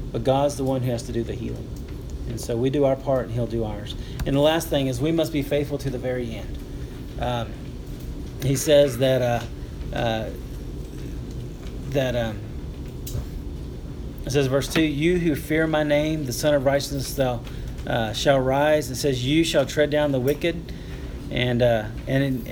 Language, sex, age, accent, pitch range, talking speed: English, male, 40-59, American, 125-145 Hz, 180 wpm